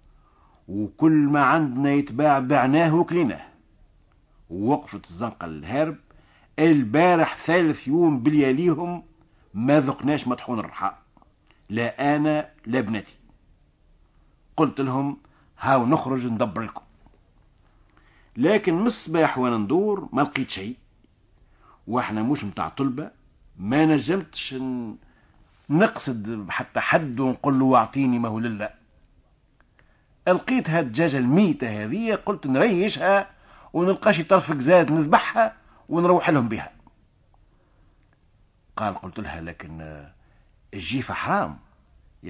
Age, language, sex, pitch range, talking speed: 60-79, Arabic, male, 105-155 Hz, 100 wpm